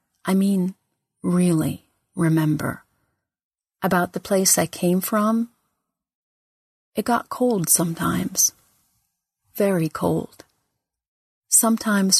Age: 40-59